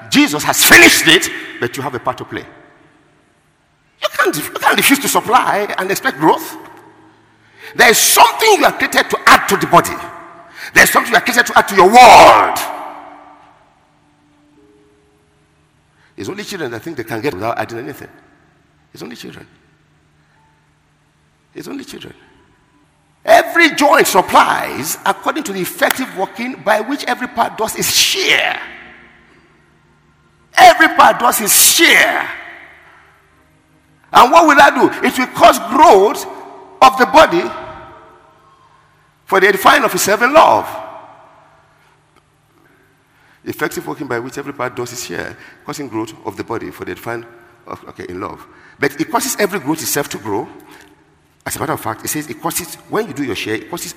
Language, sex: English, male